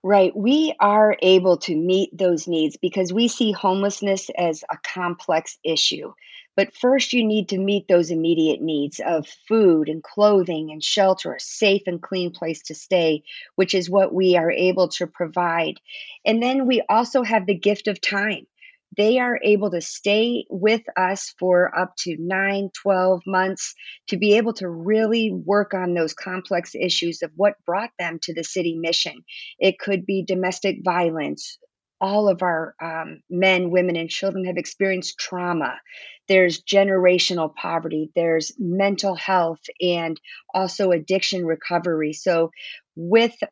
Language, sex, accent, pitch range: English, female, American, 170-205 Hz